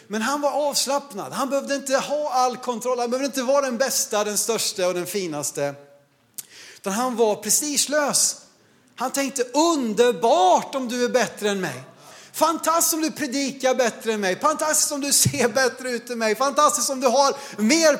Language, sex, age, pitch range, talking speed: Swedish, male, 30-49, 190-275 Hz, 175 wpm